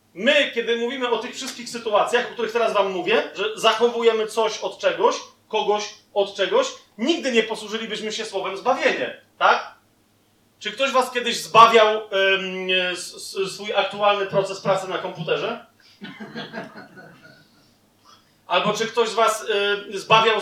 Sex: male